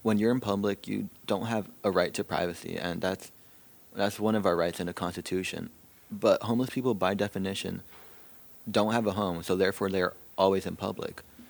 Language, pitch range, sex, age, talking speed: English, 95-115 Hz, male, 20-39, 190 wpm